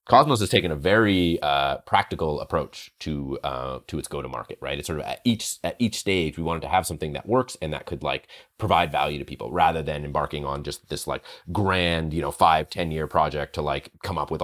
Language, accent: English, American